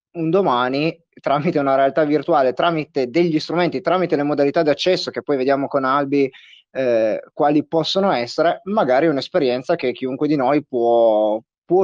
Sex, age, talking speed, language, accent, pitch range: male, 20-39, 155 wpm, Italian, native, 135-170 Hz